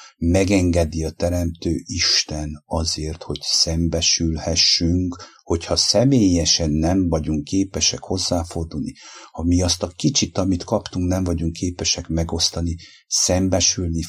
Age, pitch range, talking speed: 50-69, 85-95 Hz, 105 wpm